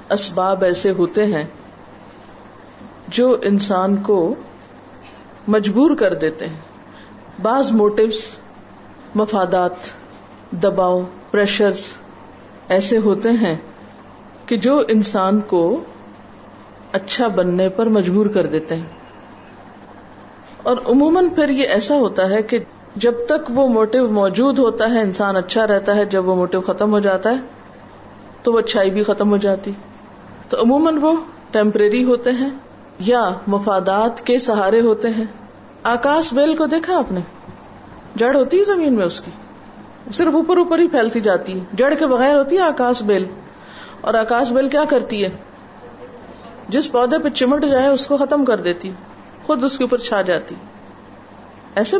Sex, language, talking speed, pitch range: female, Urdu, 145 wpm, 195-265 Hz